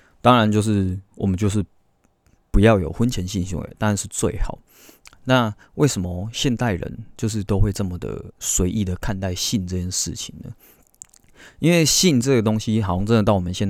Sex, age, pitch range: male, 20-39, 95-115 Hz